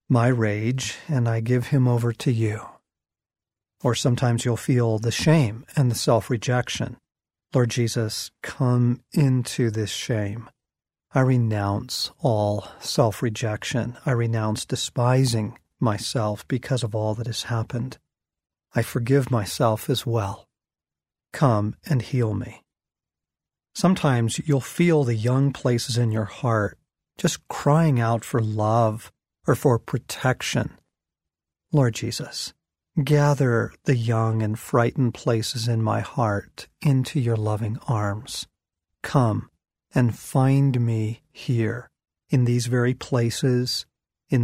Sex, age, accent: male, 40-59, American